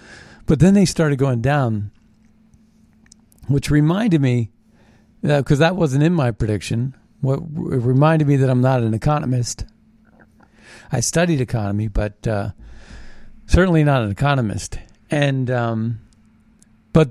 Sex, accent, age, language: male, American, 50-69, English